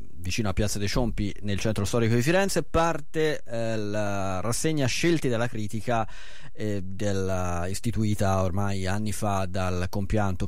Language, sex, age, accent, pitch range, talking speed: Italian, male, 30-49, native, 100-125 Hz, 145 wpm